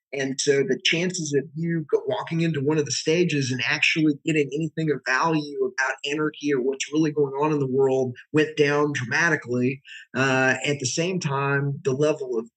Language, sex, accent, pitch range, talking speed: English, male, American, 135-165 Hz, 185 wpm